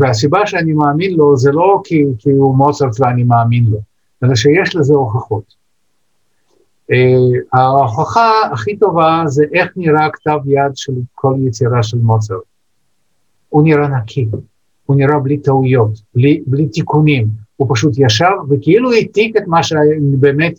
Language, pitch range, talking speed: Hebrew, 115-150 Hz, 145 wpm